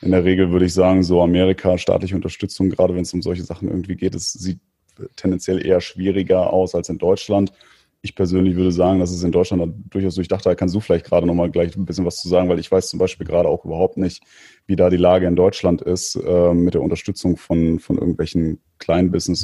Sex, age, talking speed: male, 30-49, 230 wpm